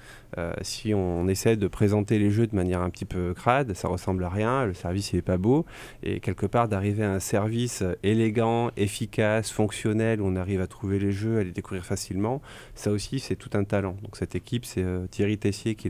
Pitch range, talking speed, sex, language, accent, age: 95-120 Hz, 220 wpm, male, French, French, 30-49